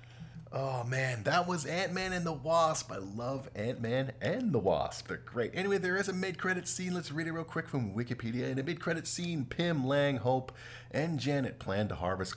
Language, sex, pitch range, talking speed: English, male, 105-160 Hz, 200 wpm